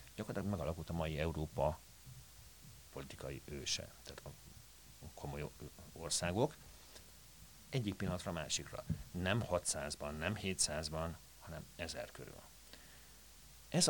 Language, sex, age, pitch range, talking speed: Hungarian, male, 50-69, 75-90 Hz, 100 wpm